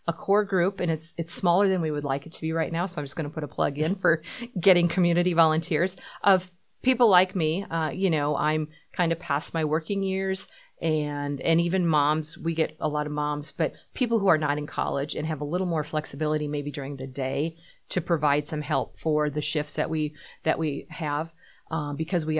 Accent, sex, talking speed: American, female, 230 wpm